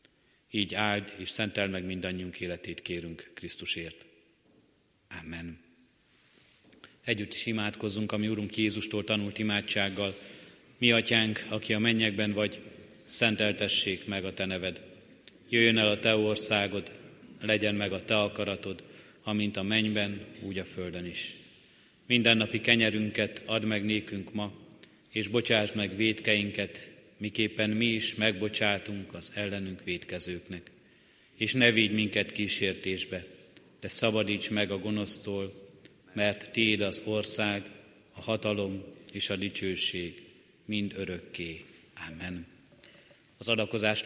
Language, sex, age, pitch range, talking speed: Hungarian, male, 30-49, 95-110 Hz, 120 wpm